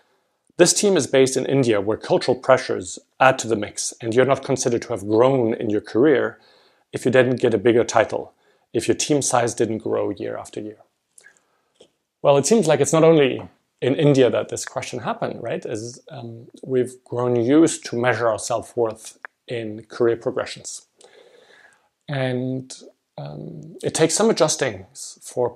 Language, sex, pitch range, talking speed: English, male, 115-145 Hz, 170 wpm